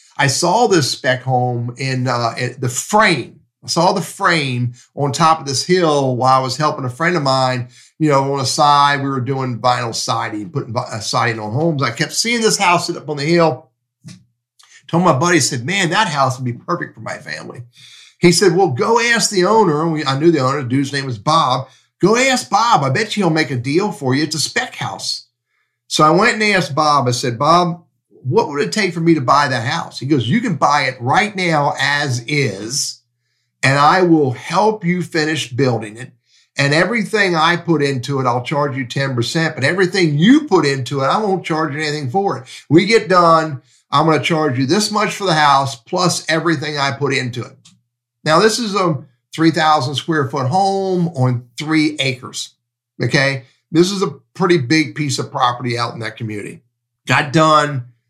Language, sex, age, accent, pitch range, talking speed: English, male, 50-69, American, 125-170 Hz, 210 wpm